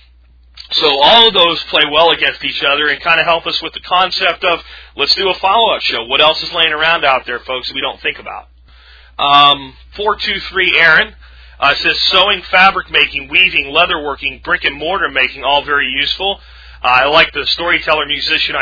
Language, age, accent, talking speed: English, 40-59, American, 190 wpm